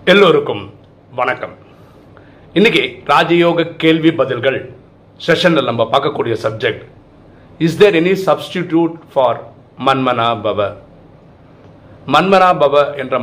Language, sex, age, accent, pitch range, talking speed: Tamil, male, 40-59, native, 125-150 Hz, 80 wpm